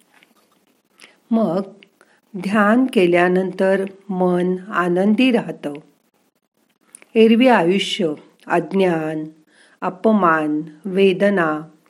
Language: Marathi